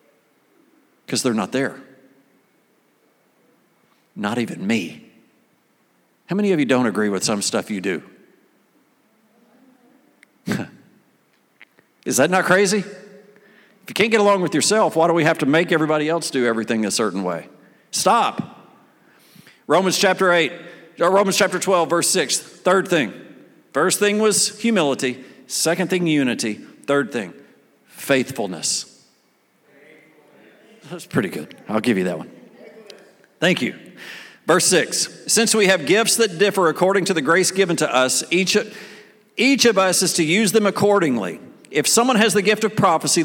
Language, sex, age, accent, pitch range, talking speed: English, male, 50-69, American, 170-215 Hz, 145 wpm